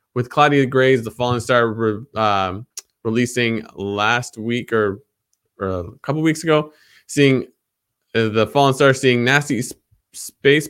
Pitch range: 110-135 Hz